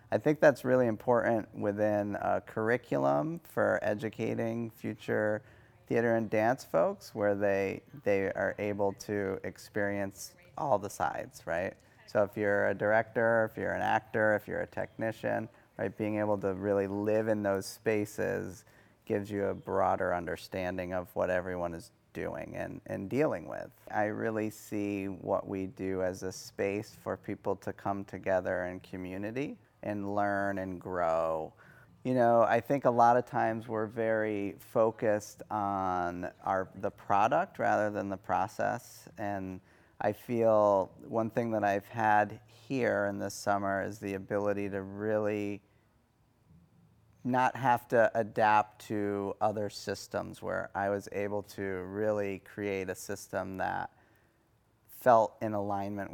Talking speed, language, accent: 145 wpm, English, American